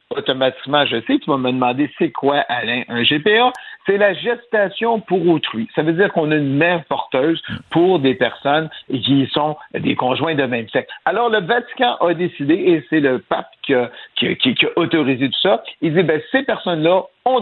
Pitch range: 140-225 Hz